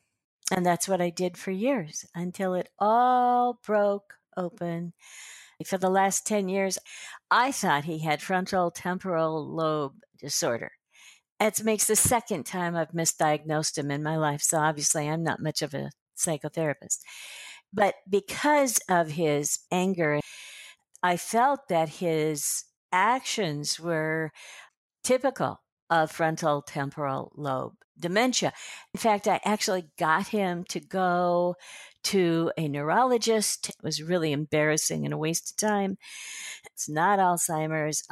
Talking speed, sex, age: 130 wpm, female, 60-79